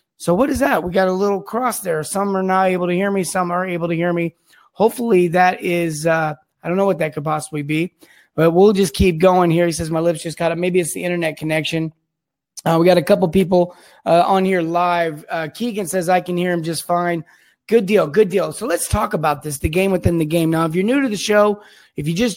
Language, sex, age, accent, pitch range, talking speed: English, male, 20-39, American, 165-190 Hz, 260 wpm